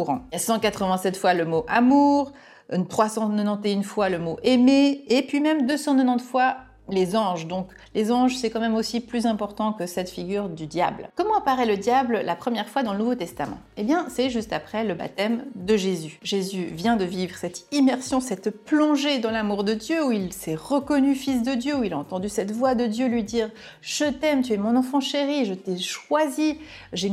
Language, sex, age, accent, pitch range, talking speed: French, female, 30-49, French, 185-260 Hz, 215 wpm